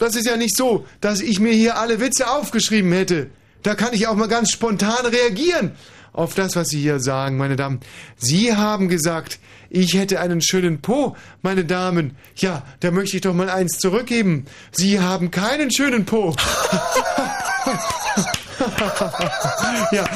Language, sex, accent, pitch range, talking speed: German, male, German, 130-190 Hz, 160 wpm